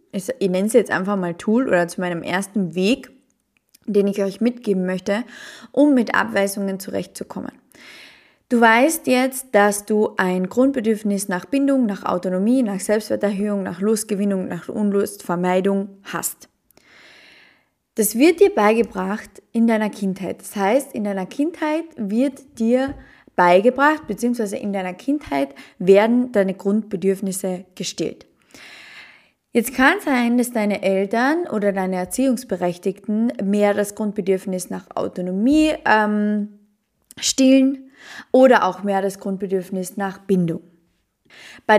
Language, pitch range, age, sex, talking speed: German, 195-250 Hz, 20-39, female, 125 wpm